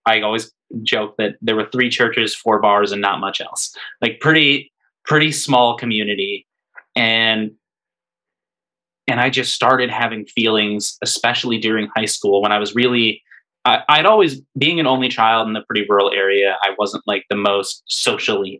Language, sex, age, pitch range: English, male, 20-39, 105-130 Hz